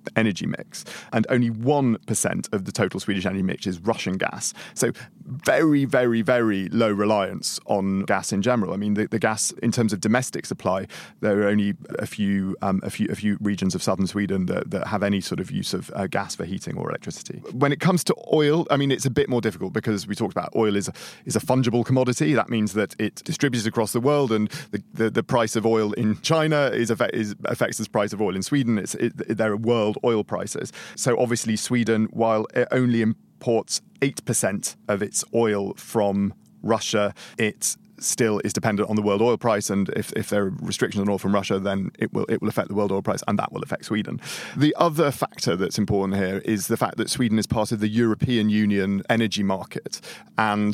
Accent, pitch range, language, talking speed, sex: British, 100-120 Hz, English, 220 wpm, male